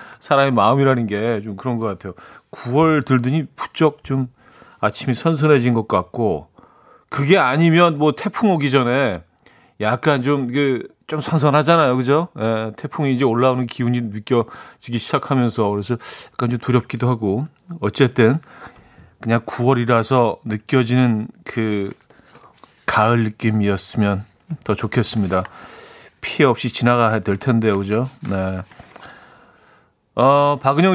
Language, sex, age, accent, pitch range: Korean, male, 40-59, native, 115-155 Hz